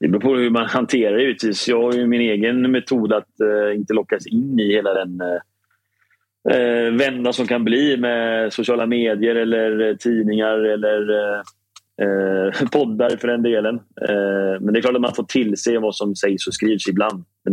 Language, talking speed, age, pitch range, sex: Swedish, 170 wpm, 30-49, 100-120 Hz, male